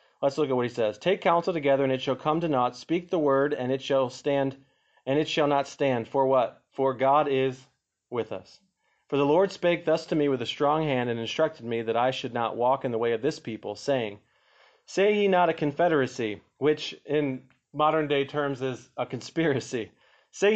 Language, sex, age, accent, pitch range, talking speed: English, male, 30-49, American, 130-155 Hz, 215 wpm